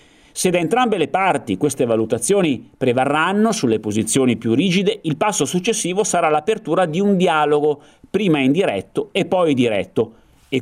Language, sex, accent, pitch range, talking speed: Italian, male, native, 130-190 Hz, 145 wpm